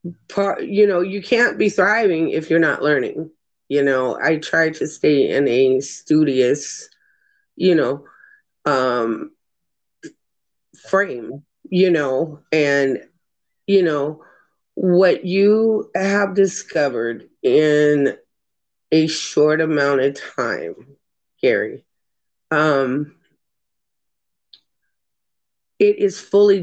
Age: 30-49